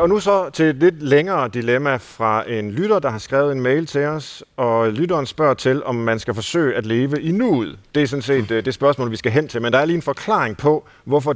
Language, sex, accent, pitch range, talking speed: Danish, male, native, 115-155 Hz, 255 wpm